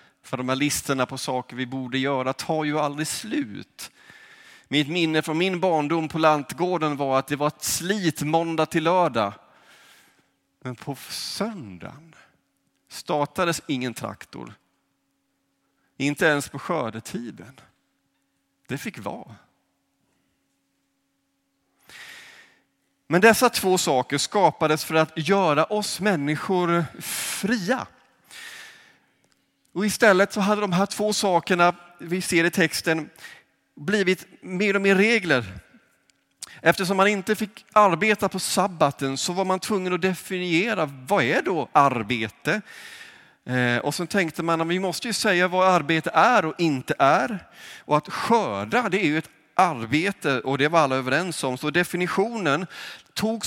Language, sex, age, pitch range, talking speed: Swedish, male, 30-49, 145-195 Hz, 135 wpm